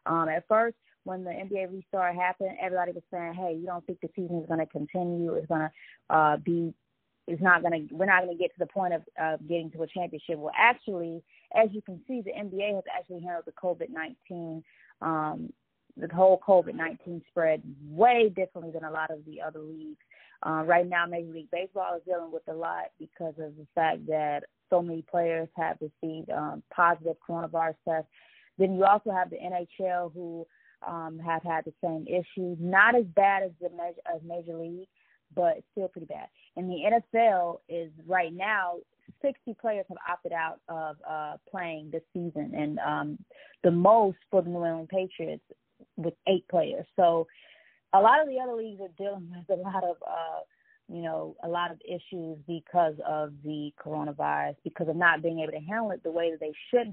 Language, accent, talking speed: English, American, 200 wpm